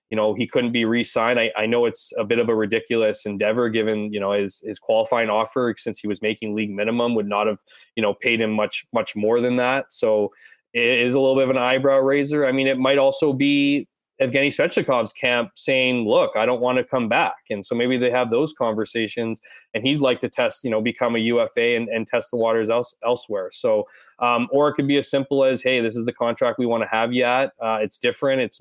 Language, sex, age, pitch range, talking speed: English, male, 20-39, 115-130 Hz, 245 wpm